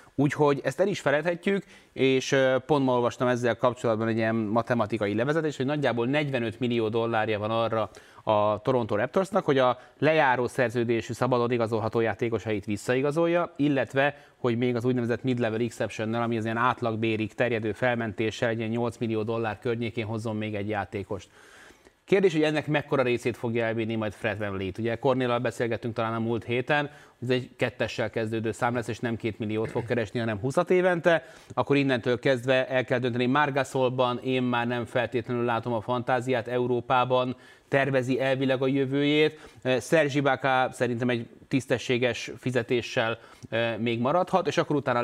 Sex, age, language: male, 30-49, Hungarian